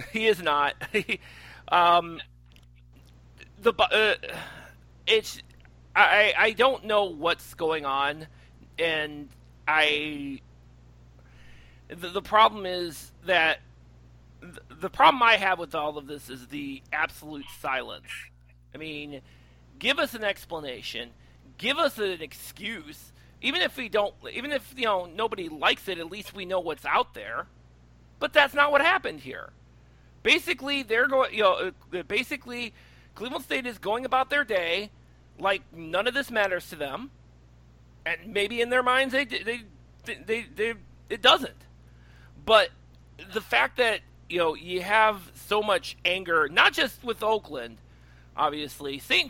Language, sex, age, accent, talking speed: English, male, 40-59, American, 140 wpm